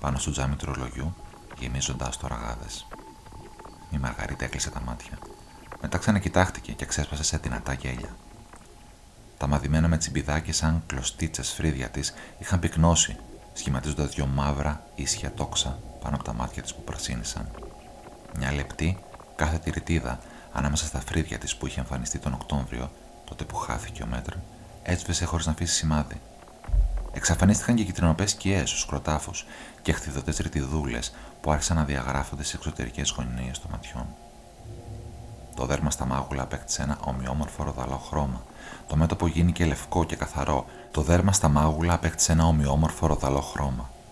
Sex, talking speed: male, 140 wpm